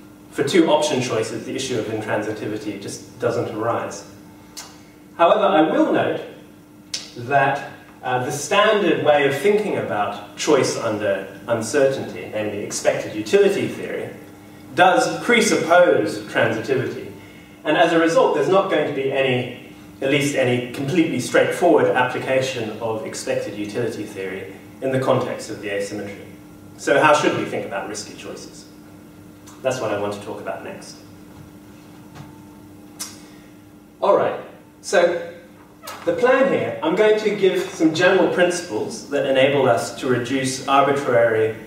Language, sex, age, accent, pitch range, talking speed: English, male, 30-49, British, 100-145 Hz, 135 wpm